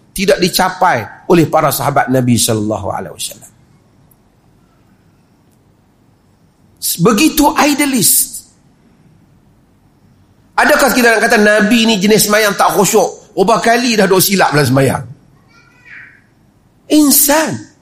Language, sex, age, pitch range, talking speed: Malay, male, 40-59, 210-275 Hz, 95 wpm